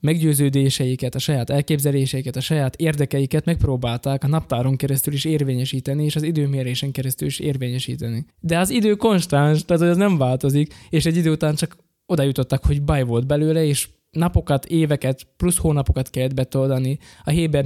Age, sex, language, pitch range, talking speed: 20-39, male, Hungarian, 130-155 Hz, 160 wpm